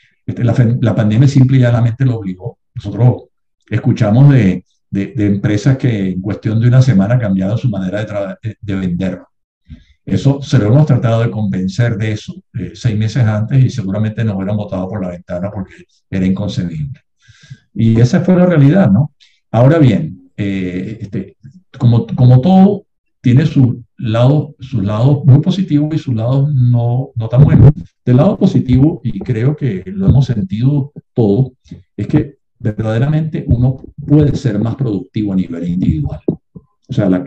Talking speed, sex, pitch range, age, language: 165 wpm, male, 100-135 Hz, 50-69, Spanish